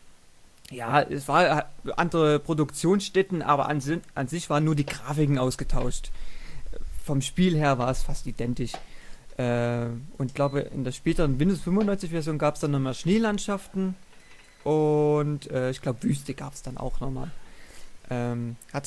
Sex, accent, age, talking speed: male, German, 30-49, 150 wpm